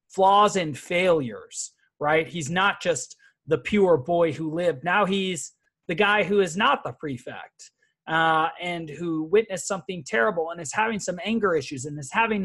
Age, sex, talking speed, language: 30-49, male, 175 wpm, English